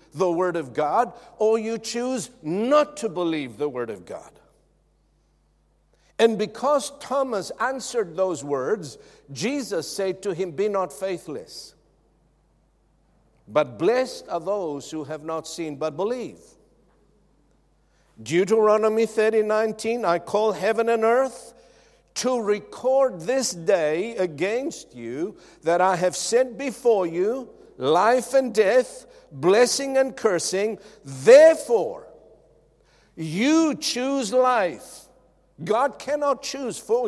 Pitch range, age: 185-265 Hz, 60-79